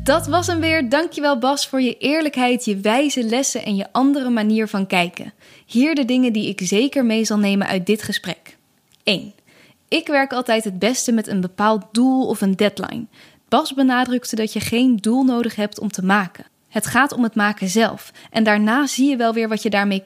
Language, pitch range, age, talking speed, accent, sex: Dutch, 210-255 Hz, 10-29, 205 wpm, Dutch, female